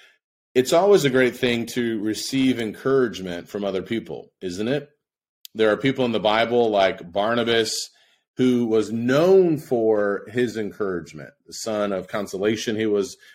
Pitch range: 105-130 Hz